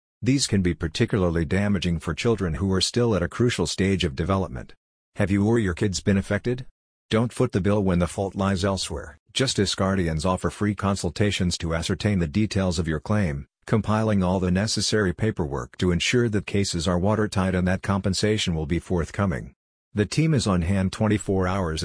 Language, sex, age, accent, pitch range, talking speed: English, male, 50-69, American, 90-105 Hz, 185 wpm